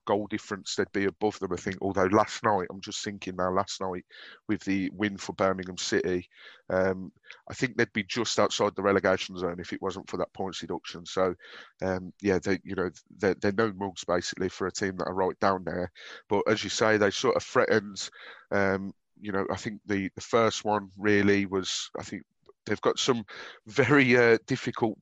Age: 30-49